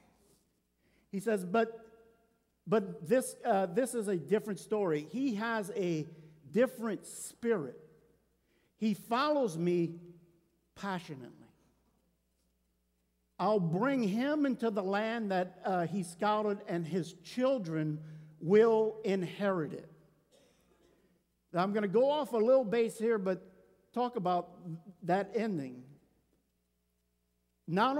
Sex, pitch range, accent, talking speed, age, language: male, 140-200 Hz, American, 110 wpm, 50-69, English